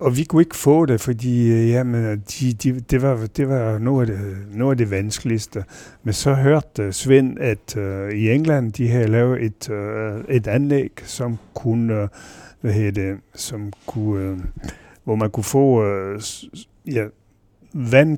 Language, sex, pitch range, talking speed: Danish, male, 100-125 Hz, 175 wpm